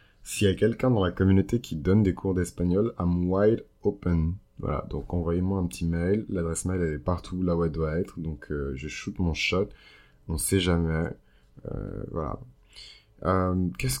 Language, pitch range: French, 80-100 Hz